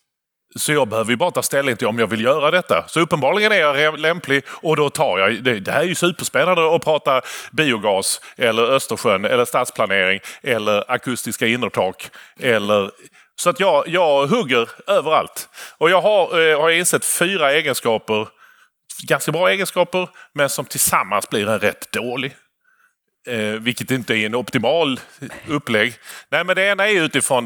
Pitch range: 120-170 Hz